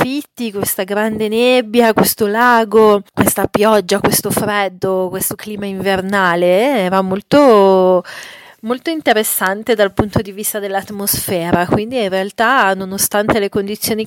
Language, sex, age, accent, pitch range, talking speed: Italian, female, 30-49, native, 180-215 Hz, 120 wpm